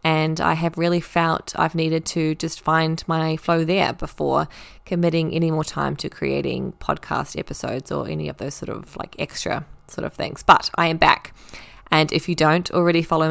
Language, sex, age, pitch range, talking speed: English, female, 20-39, 150-180 Hz, 195 wpm